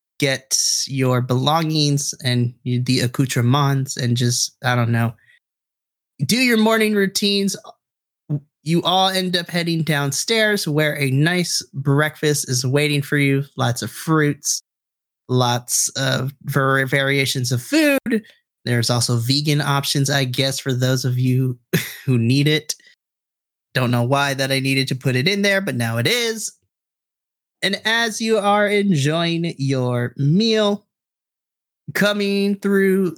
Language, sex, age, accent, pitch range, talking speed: English, male, 30-49, American, 130-180 Hz, 135 wpm